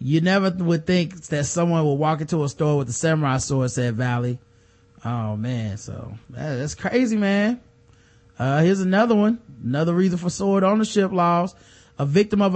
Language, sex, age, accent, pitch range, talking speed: English, male, 20-39, American, 145-185 Hz, 170 wpm